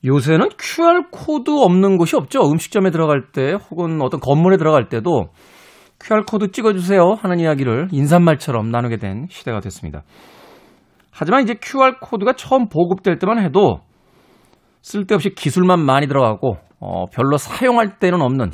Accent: native